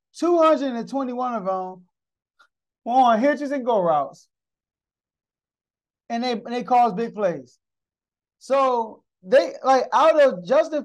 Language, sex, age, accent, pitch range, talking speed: English, male, 20-39, American, 185-260 Hz, 120 wpm